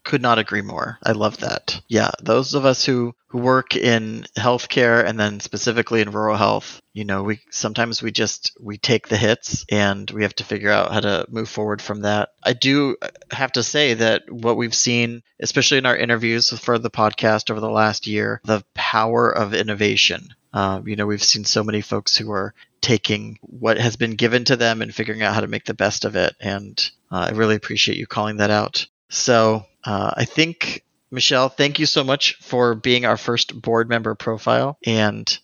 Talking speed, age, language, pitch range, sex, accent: 205 wpm, 30-49, English, 110-125 Hz, male, American